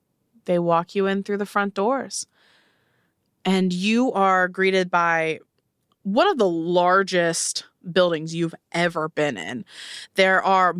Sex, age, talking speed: female, 20-39, 135 wpm